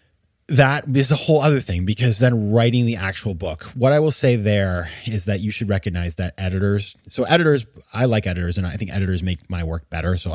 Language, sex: English, male